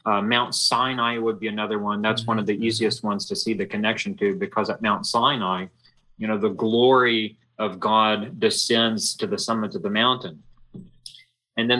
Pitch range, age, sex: 110-130 Hz, 30-49, male